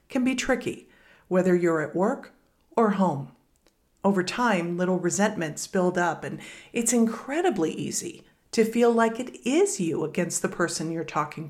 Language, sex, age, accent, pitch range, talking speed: English, female, 50-69, American, 175-230 Hz, 155 wpm